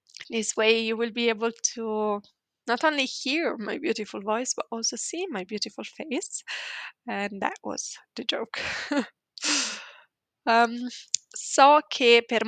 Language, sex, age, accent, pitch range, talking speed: Italian, female, 20-39, native, 210-270 Hz, 135 wpm